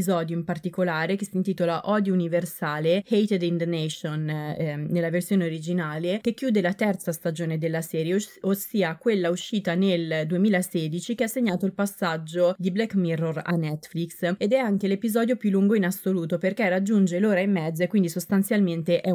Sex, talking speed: female, 170 wpm